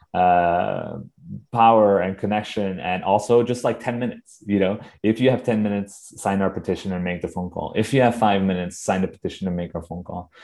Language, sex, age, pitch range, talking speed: English, male, 20-39, 95-110 Hz, 220 wpm